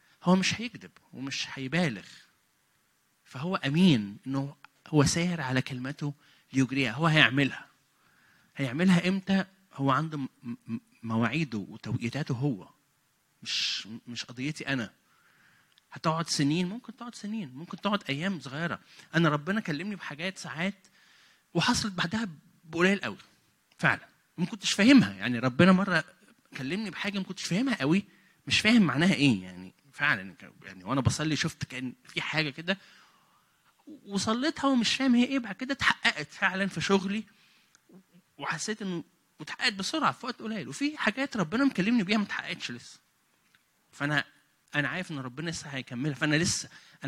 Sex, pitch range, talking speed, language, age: male, 135-195 Hz, 135 wpm, English, 30-49